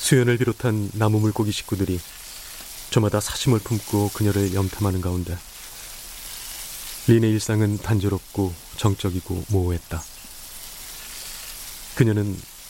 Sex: male